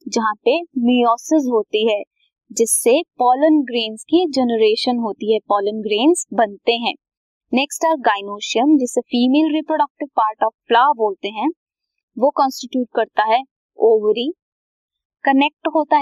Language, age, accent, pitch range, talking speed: Hindi, 20-39, native, 220-300 Hz, 125 wpm